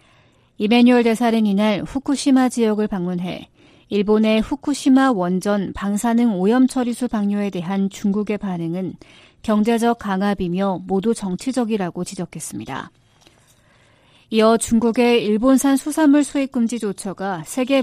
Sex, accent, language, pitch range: female, native, Korean, 195-245 Hz